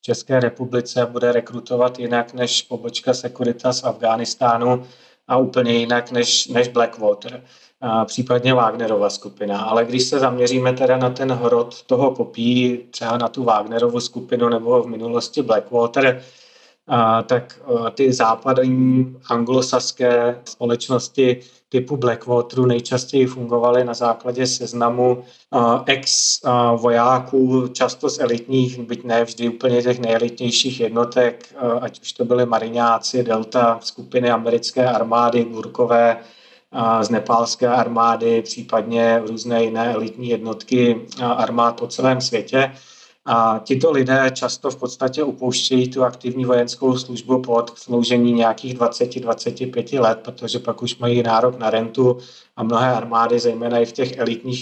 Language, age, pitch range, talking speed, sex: Czech, 30-49, 115-125 Hz, 130 wpm, male